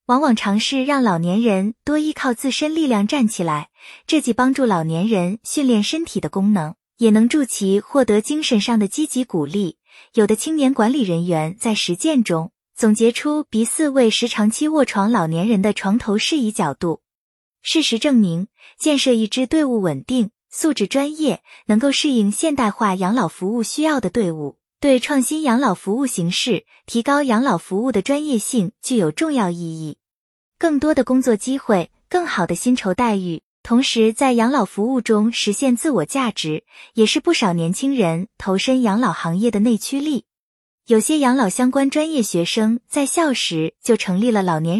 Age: 20-39